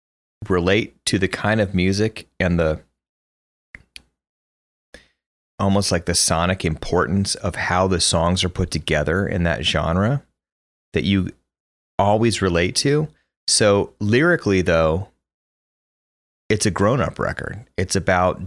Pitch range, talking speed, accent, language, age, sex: 75-95 Hz, 120 wpm, American, English, 30-49, male